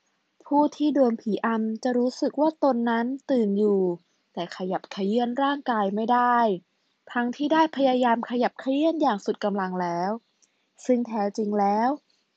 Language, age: Thai, 20-39